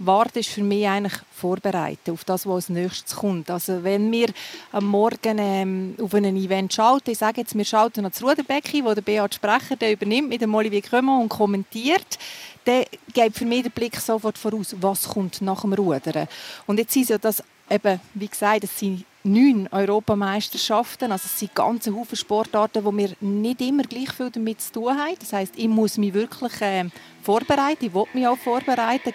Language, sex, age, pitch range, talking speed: German, female, 40-59, 195-235 Hz, 195 wpm